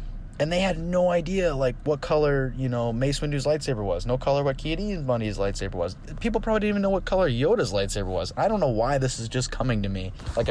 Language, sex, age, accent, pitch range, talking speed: English, male, 20-39, American, 100-135 Hz, 240 wpm